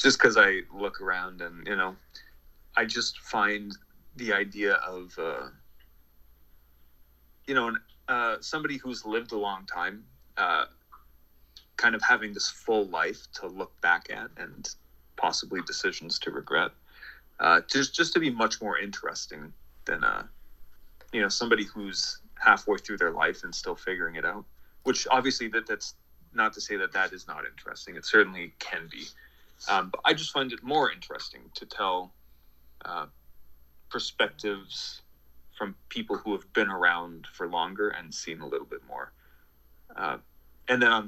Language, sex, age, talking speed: English, male, 30-49, 160 wpm